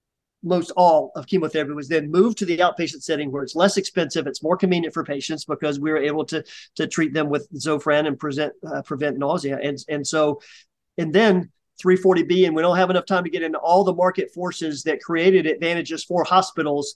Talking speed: 210 wpm